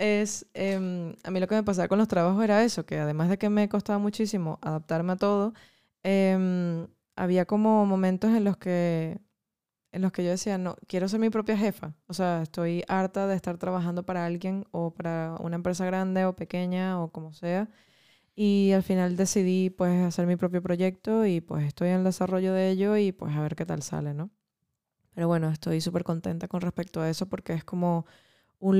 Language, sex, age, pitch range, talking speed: Spanish, female, 20-39, 165-195 Hz, 205 wpm